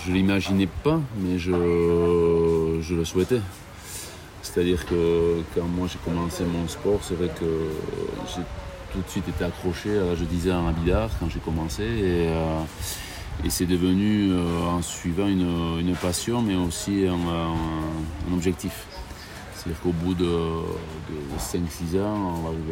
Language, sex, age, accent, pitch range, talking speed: French, male, 40-59, French, 80-90 Hz, 150 wpm